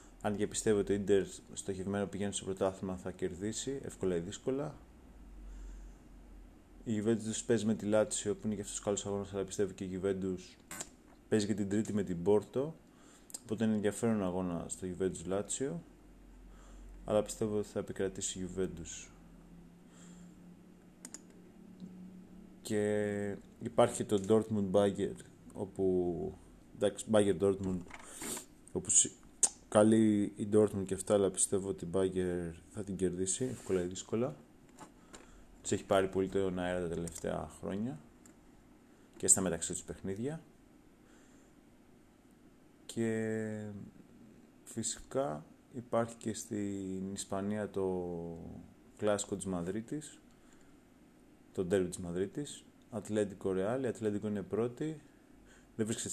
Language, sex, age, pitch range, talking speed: Greek, male, 20-39, 95-110 Hz, 120 wpm